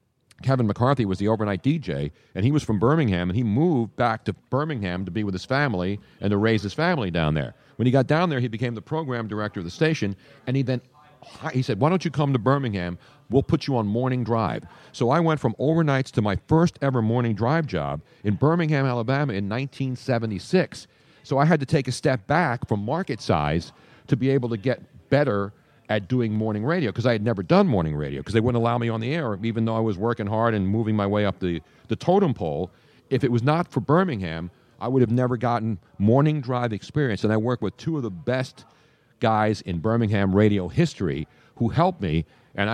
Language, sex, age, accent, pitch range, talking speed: English, male, 50-69, American, 105-135 Hz, 220 wpm